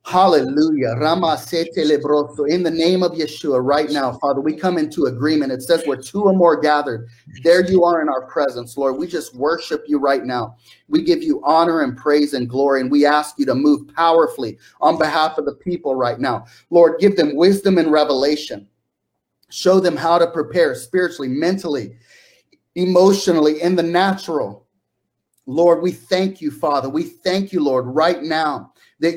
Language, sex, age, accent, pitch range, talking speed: English, male, 30-49, American, 150-195 Hz, 175 wpm